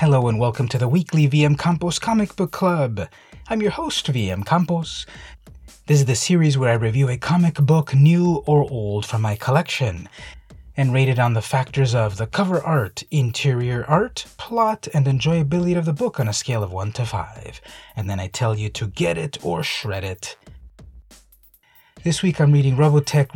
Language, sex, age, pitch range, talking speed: English, male, 30-49, 105-150 Hz, 190 wpm